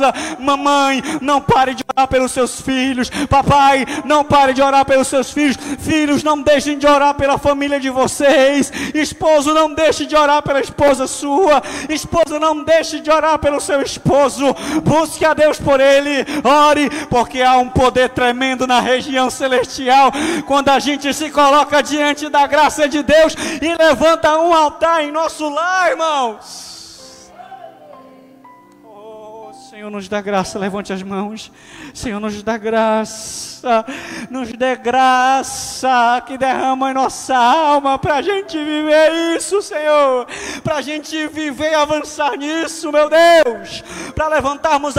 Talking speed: 145 wpm